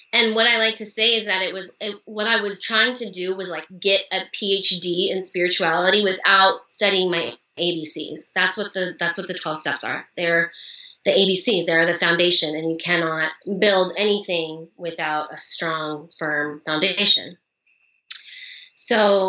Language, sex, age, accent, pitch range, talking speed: English, female, 30-49, American, 170-210 Hz, 165 wpm